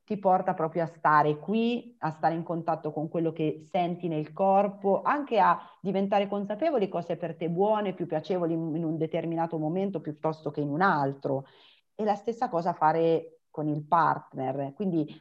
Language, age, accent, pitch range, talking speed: Italian, 30-49, native, 155-190 Hz, 180 wpm